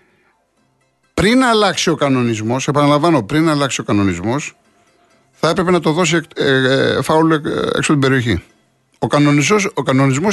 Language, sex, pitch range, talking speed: Greek, male, 130-195 Hz, 145 wpm